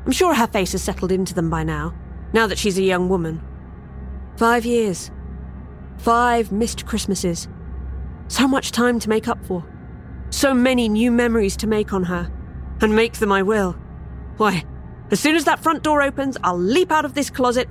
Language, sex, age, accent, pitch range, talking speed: English, female, 40-59, British, 175-240 Hz, 185 wpm